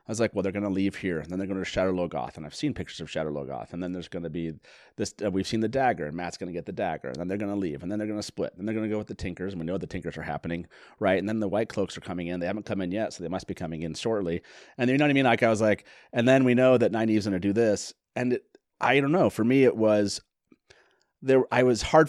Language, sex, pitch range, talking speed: English, male, 95-130 Hz, 335 wpm